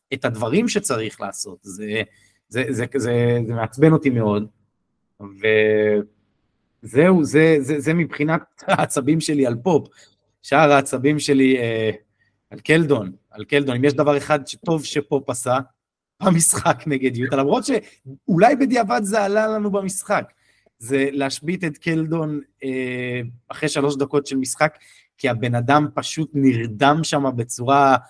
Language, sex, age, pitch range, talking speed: Hebrew, male, 30-49, 115-145 Hz, 135 wpm